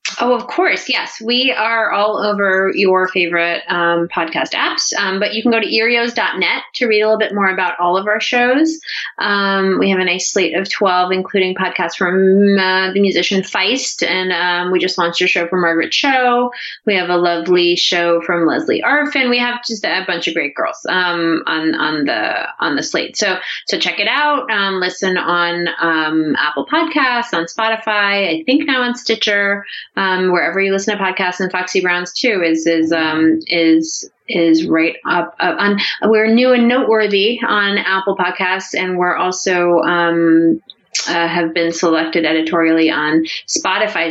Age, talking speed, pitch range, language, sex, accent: 30-49, 180 wpm, 175-225 Hz, English, female, American